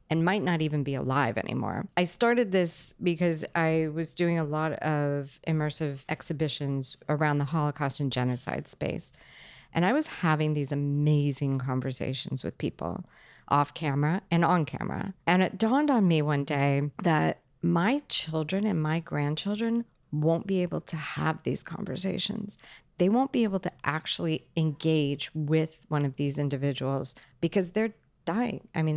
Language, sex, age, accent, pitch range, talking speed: English, female, 40-59, American, 140-170 Hz, 155 wpm